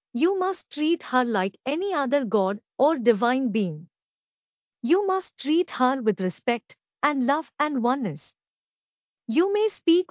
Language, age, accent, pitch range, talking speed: English, 50-69, Indian, 225-310 Hz, 140 wpm